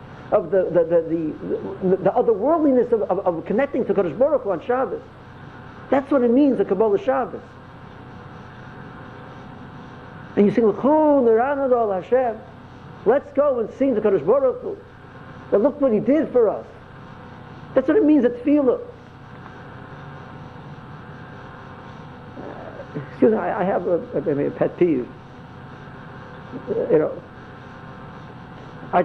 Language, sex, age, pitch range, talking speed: English, male, 50-69, 145-245 Hz, 125 wpm